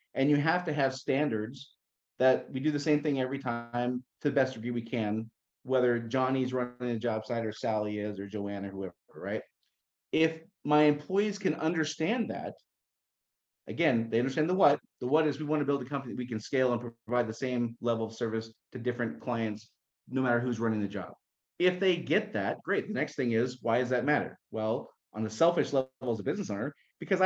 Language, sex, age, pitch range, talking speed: English, male, 30-49, 120-155 Hz, 215 wpm